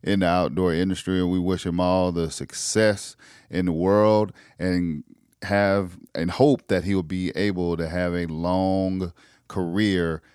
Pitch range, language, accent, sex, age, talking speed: 90-110 Hz, English, American, male, 40-59, 155 wpm